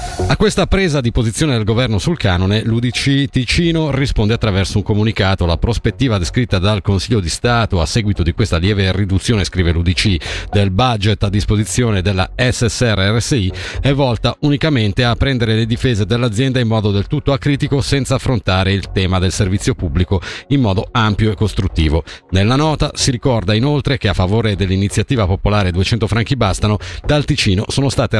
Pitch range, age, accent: 95-135 Hz, 50-69, native